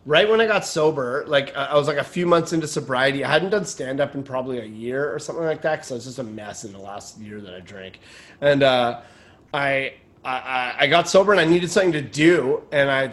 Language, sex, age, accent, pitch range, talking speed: English, male, 30-49, American, 130-170 Hz, 240 wpm